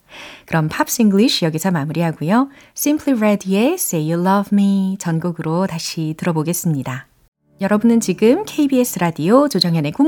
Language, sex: Korean, female